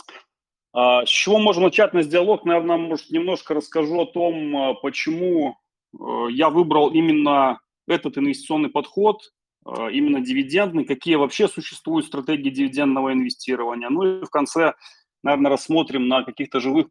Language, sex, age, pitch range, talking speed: Russian, male, 30-49, 140-220 Hz, 130 wpm